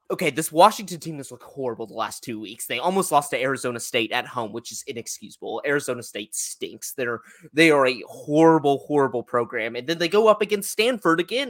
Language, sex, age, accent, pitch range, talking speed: English, male, 20-39, American, 120-165 Hz, 210 wpm